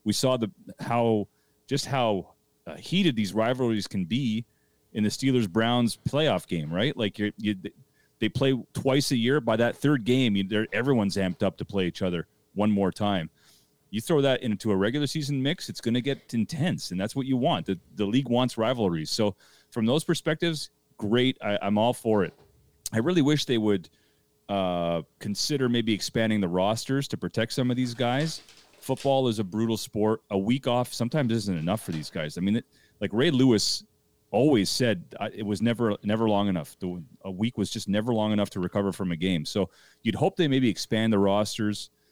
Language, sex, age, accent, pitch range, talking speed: English, male, 30-49, American, 100-125 Hz, 195 wpm